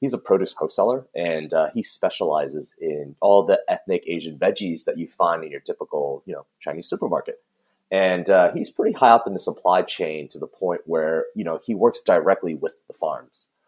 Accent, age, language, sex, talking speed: American, 30-49, English, male, 200 wpm